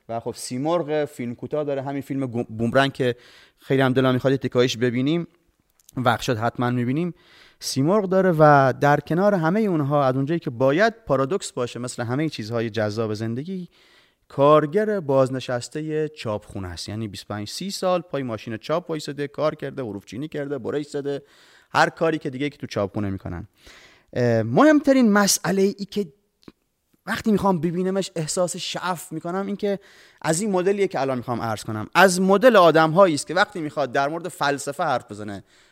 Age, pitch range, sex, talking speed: 30-49, 125-180 Hz, male, 165 wpm